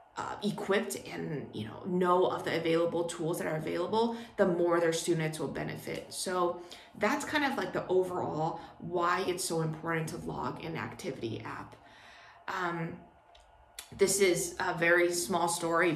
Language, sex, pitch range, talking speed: English, female, 165-185 Hz, 160 wpm